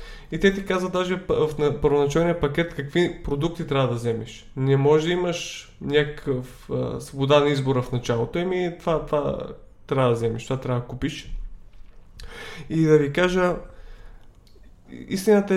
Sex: male